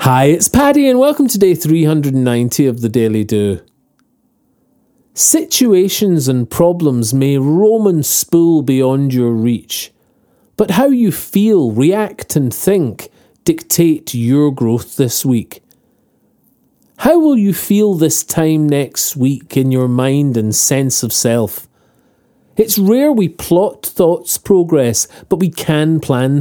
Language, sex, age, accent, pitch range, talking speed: English, male, 40-59, British, 130-195 Hz, 135 wpm